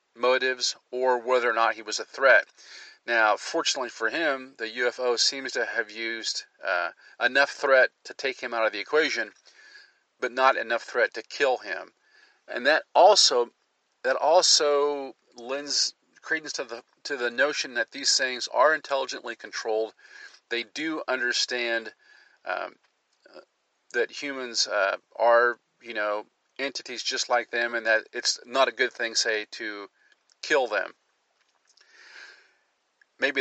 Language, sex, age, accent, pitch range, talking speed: English, male, 40-59, American, 115-145 Hz, 145 wpm